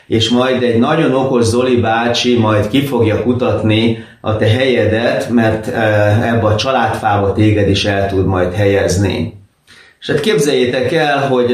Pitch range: 110-130 Hz